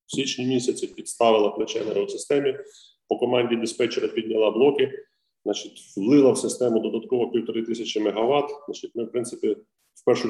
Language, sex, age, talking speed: Ukrainian, male, 30-49, 145 wpm